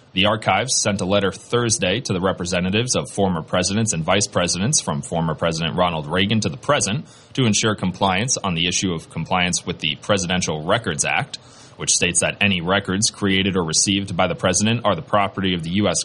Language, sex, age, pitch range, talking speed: English, male, 30-49, 90-115 Hz, 200 wpm